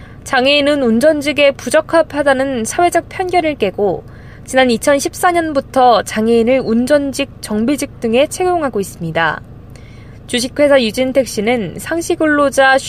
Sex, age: female, 20-39